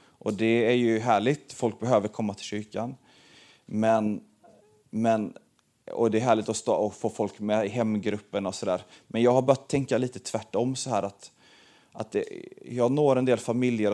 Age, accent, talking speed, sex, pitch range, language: 30-49, native, 190 wpm, male, 110-130 Hz, Swedish